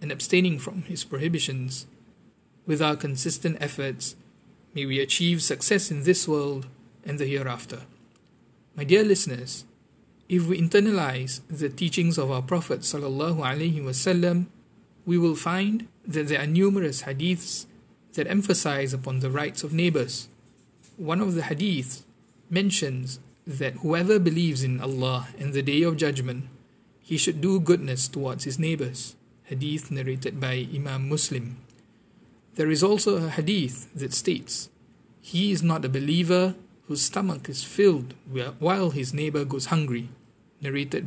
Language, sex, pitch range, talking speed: English, male, 135-175 Hz, 140 wpm